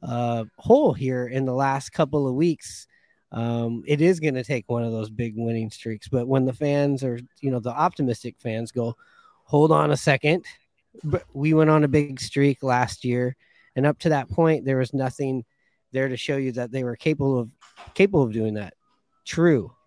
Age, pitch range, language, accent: 30-49, 120-145 Hz, English, American